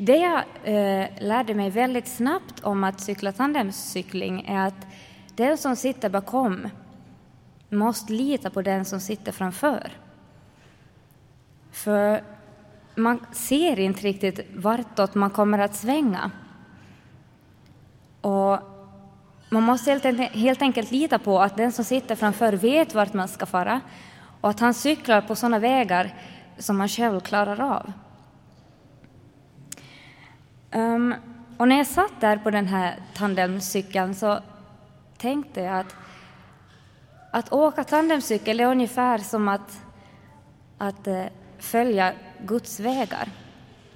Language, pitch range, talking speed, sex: Swedish, 190-240 Hz, 120 wpm, female